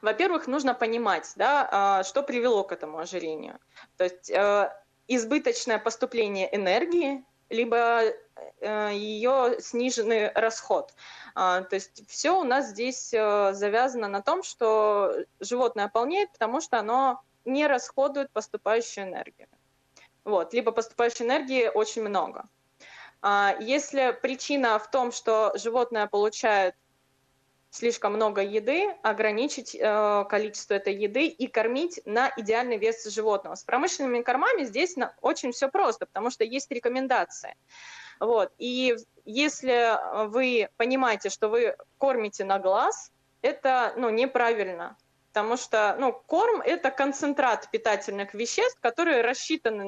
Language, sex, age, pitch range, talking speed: Russian, female, 20-39, 210-265 Hz, 120 wpm